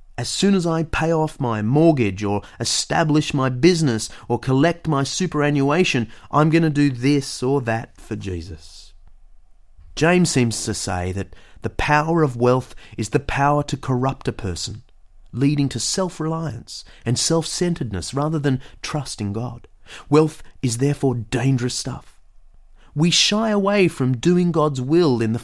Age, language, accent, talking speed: 30-49, English, Australian, 155 wpm